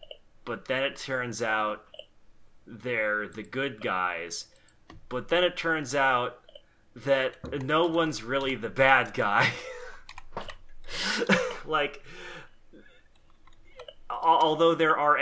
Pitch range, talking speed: 105-135 Hz, 100 wpm